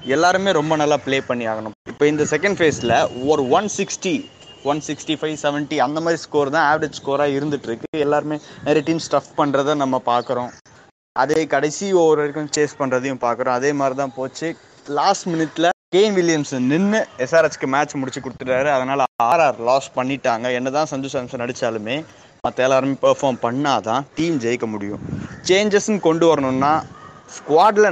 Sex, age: male, 20-39